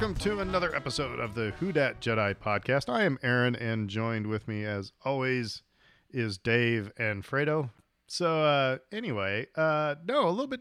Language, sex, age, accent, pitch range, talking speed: English, male, 40-59, American, 110-150 Hz, 175 wpm